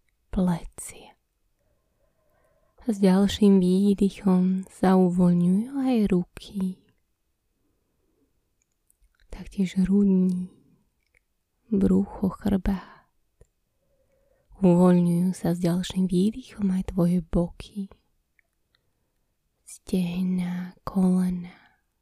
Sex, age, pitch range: female, 20-39, 180-205 Hz